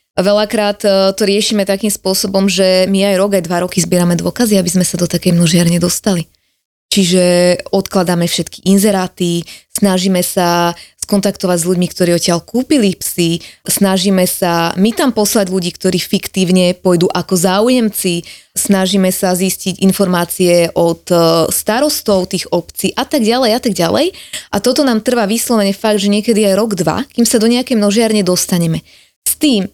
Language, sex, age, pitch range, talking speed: Slovak, female, 20-39, 180-205 Hz, 155 wpm